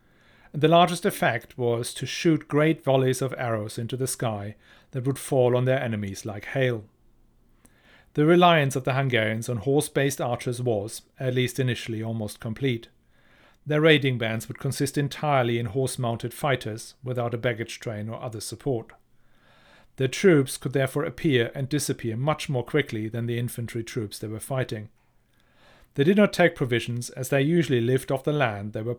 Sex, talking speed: male, 170 wpm